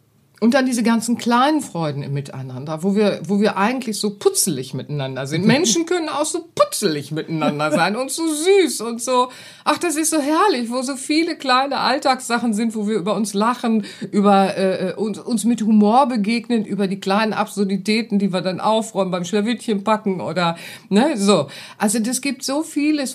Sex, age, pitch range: female, 50-69, 185-235 Hz